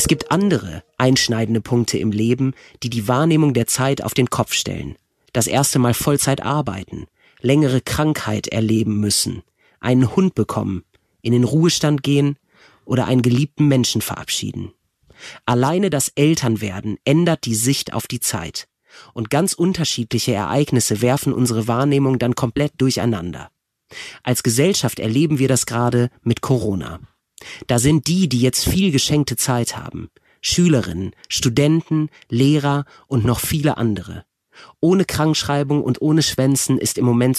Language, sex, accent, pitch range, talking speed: German, male, German, 120-145 Hz, 140 wpm